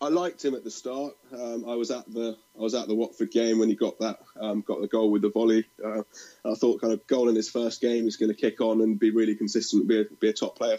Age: 20-39